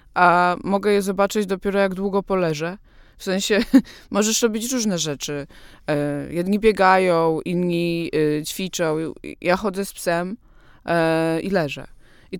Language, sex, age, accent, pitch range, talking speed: Polish, female, 20-39, native, 175-210 Hz, 120 wpm